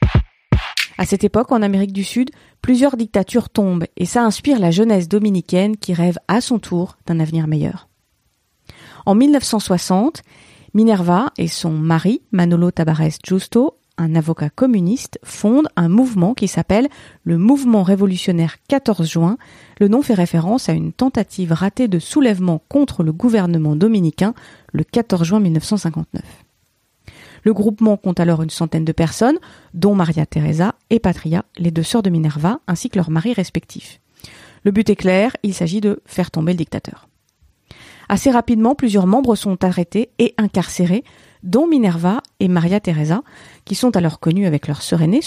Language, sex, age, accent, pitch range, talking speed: French, female, 30-49, French, 170-225 Hz, 160 wpm